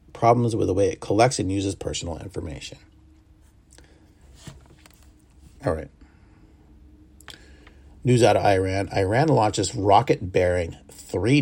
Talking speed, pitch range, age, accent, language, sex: 100 wpm, 75-105 Hz, 30-49, American, English, male